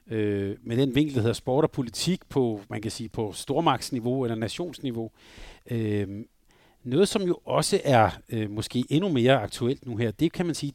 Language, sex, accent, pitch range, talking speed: Danish, male, native, 115-150 Hz, 175 wpm